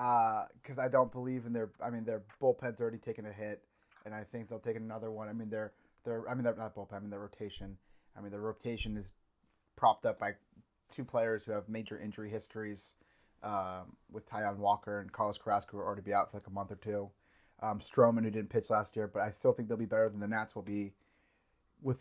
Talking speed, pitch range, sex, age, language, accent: 240 wpm, 105-125 Hz, male, 30-49, English, American